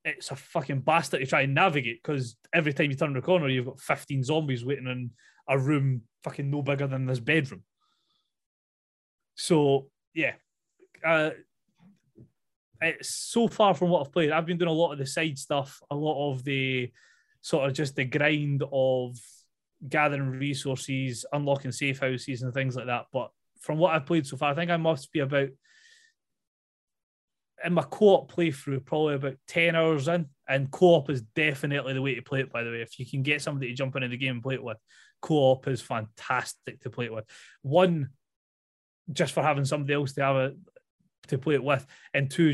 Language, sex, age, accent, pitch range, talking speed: English, male, 20-39, British, 135-165 Hz, 190 wpm